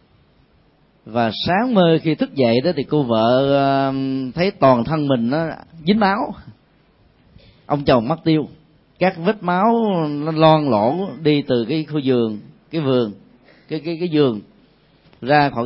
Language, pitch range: Vietnamese, 120-165 Hz